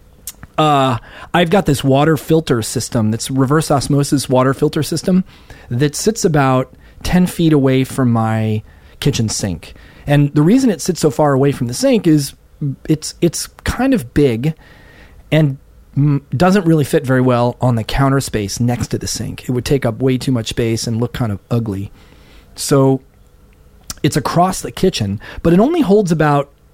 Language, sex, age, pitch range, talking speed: English, male, 30-49, 115-155 Hz, 175 wpm